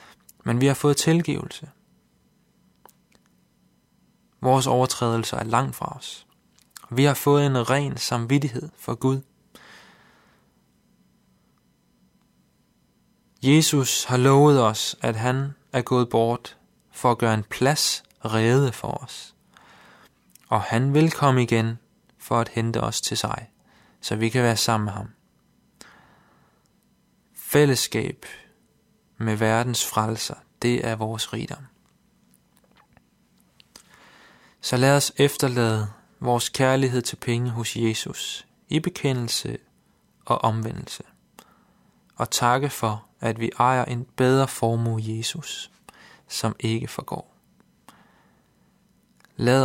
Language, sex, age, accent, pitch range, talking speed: Danish, male, 20-39, native, 115-135 Hz, 110 wpm